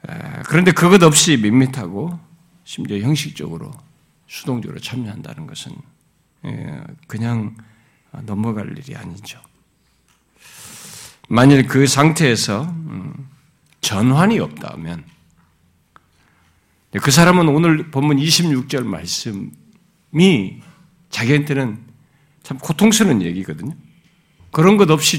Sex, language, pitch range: male, Korean, 120-165 Hz